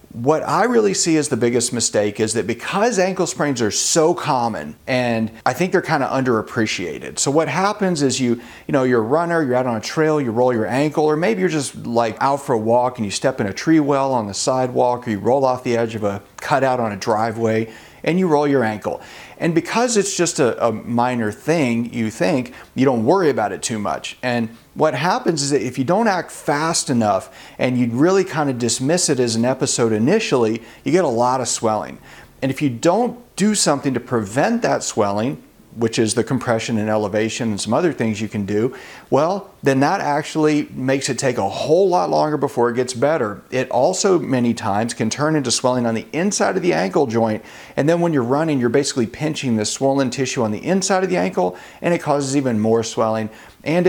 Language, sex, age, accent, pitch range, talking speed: English, male, 40-59, American, 115-150 Hz, 225 wpm